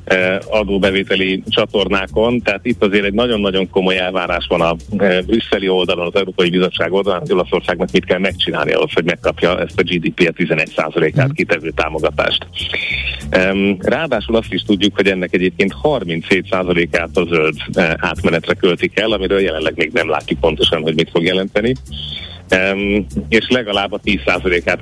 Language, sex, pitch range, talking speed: Hungarian, male, 90-105 Hz, 145 wpm